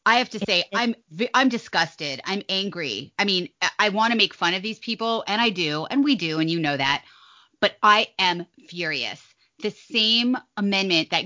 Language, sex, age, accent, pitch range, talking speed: English, female, 30-49, American, 170-220 Hz, 195 wpm